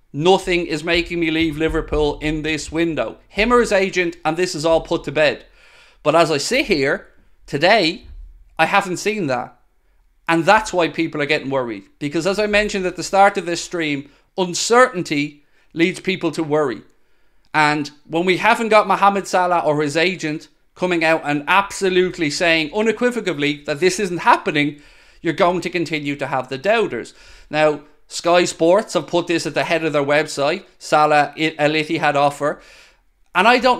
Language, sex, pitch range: English, male, 145-180 Hz